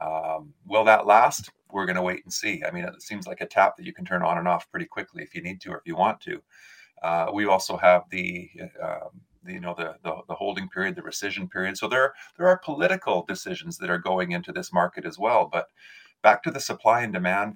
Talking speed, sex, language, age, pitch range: 250 wpm, male, English, 30-49, 90-130 Hz